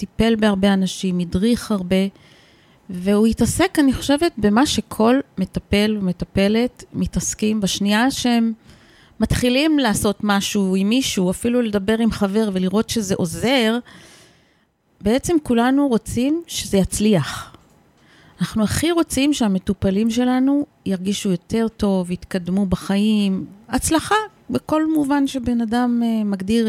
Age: 30-49